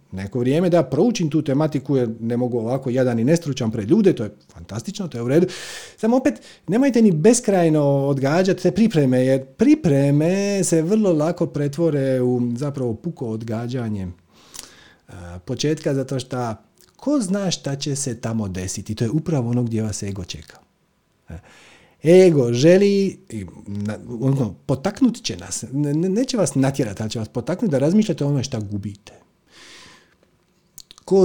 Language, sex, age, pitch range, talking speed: Croatian, male, 40-59, 120-180 Hz, 140 wpm